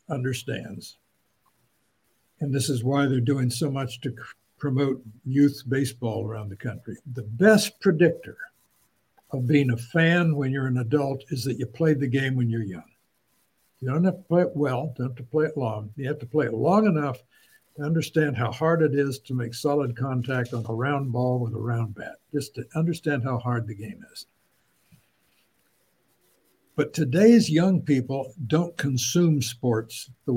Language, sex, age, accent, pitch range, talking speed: English, male, 60-79, American, 120-150 Hz, 180 wpm